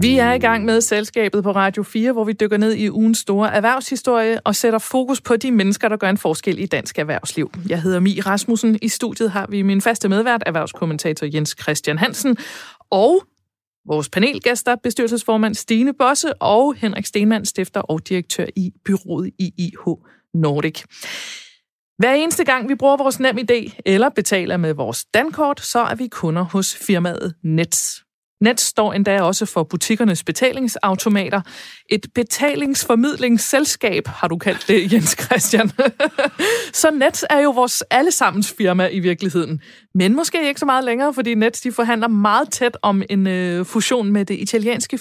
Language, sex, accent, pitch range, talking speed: Danish, female, native, 185-240 Hz, 165 wpm